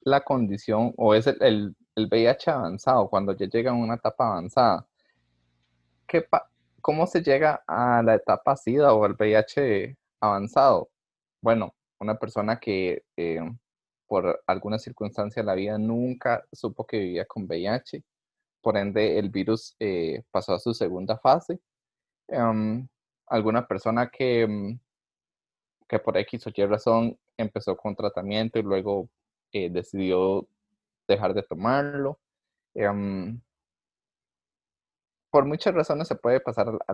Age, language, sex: 20-39, Spanish, male